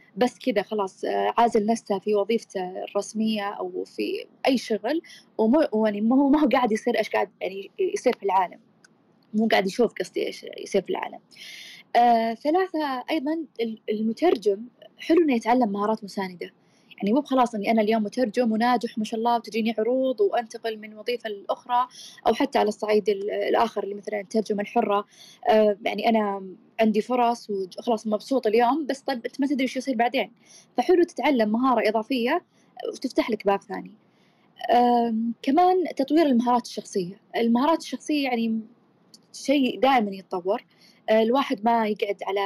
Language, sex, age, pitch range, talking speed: Arabic, female, 20-39, 205-255 Hz, 145 wpm